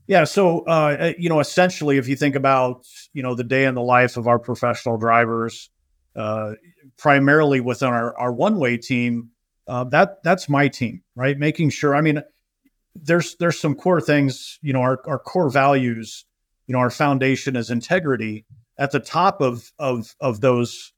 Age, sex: 50-69, male